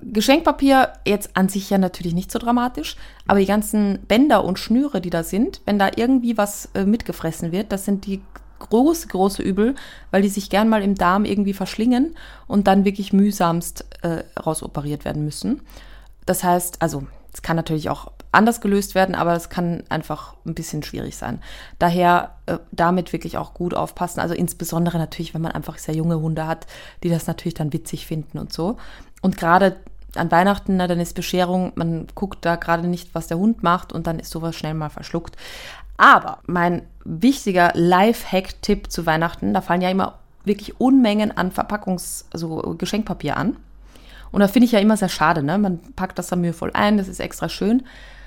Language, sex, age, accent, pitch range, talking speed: German, female, 30-49, German, 170-210 Hz, 190 wpm